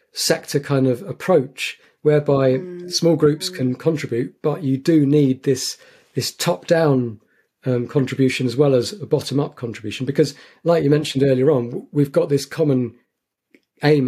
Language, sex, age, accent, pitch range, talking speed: English, male, 40-59, British, 120-145 Hz, 145 wpm